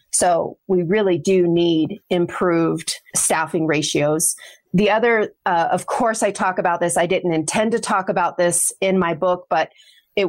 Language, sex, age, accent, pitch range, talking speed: English, female, 30-49, American, 170-205 Hz, 170 wpm